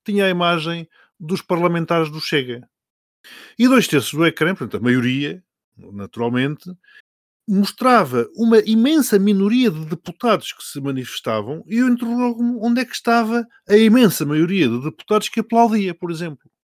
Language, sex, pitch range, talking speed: Portuguese, male, 140-205 Hz, 150 wpm